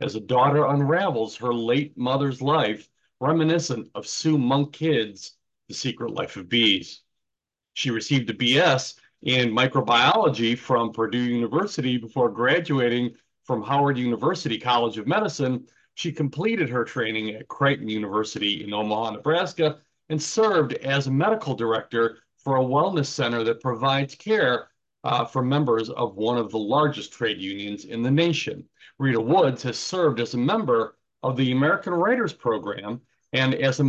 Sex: male